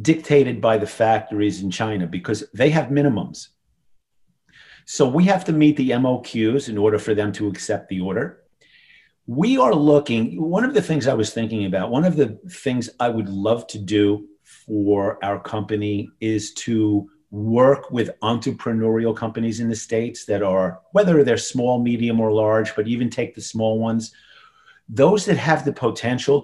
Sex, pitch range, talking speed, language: male, 110-140 Hz, 170 wpm, English